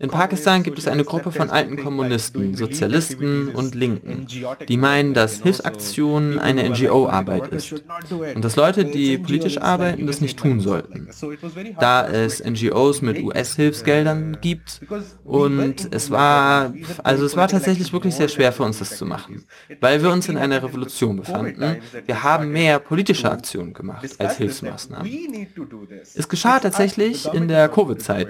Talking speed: 145 wpm